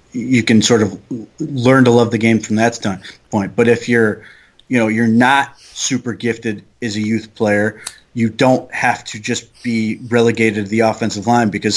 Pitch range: 105-120 Hz